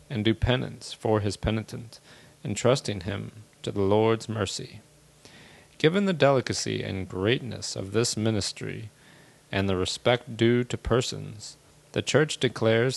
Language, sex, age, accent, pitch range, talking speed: English, male, 40-59, American, 110-140 Hz, 135 wpm